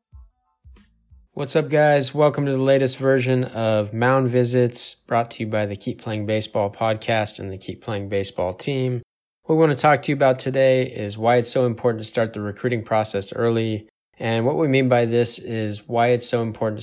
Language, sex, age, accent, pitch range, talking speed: English, male, 20-39, American, 105-125 Hz, 205 wpm